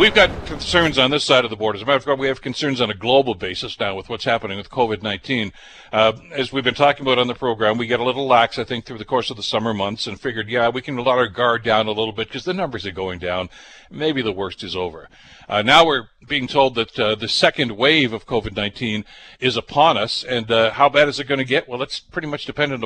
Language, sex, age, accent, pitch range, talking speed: English, male, 60-79, American, 110-135 Hz, 270 wpm